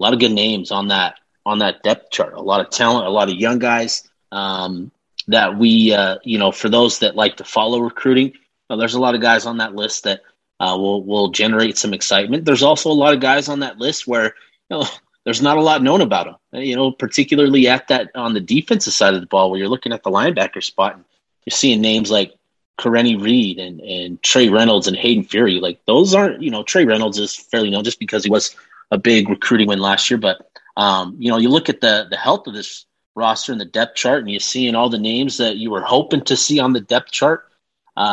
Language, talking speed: English, 245 wpm